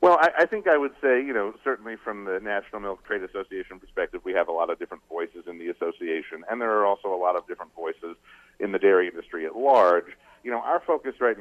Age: 40-59